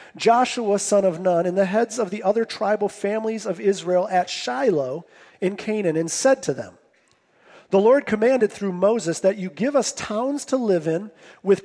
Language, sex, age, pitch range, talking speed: English, male, 40-59, 180-235 Hz, 185 wpm